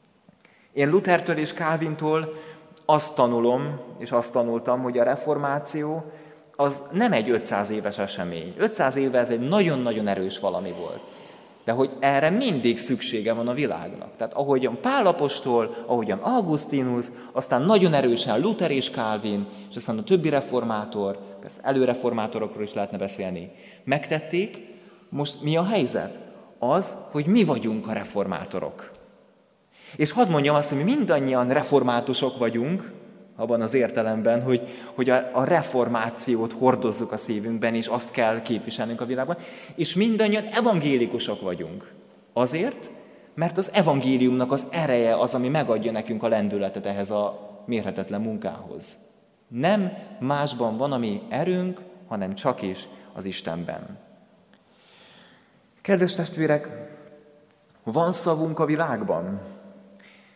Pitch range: 115-160 Hz